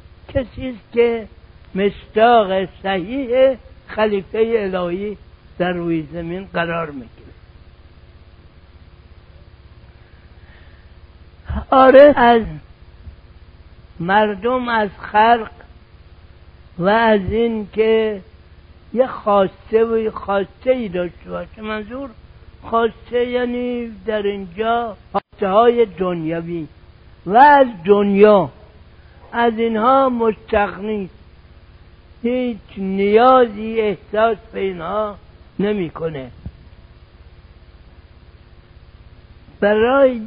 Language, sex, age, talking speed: Persian, male, 60-79, 75 wpm